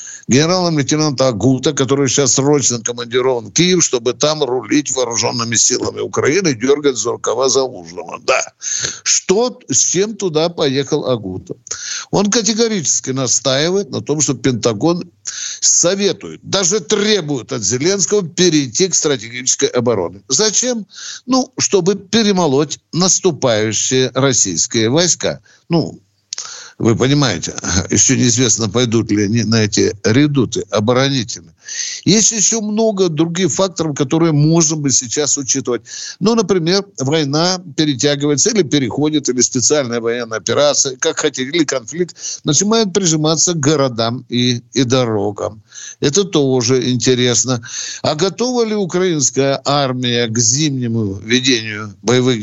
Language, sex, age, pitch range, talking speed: Russian, male, 60-79, 125-175 Hz, 115 wpm